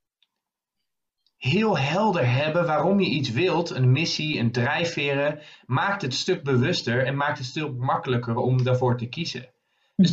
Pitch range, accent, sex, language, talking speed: 120-150 Hz, Dutch, male, Dutch, 150 wpm